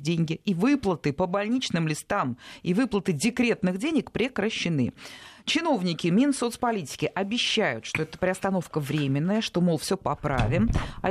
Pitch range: 150-215 Hz